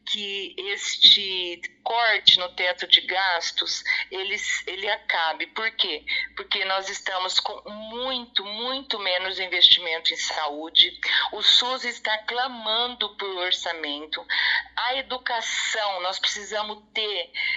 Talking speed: 115 wpm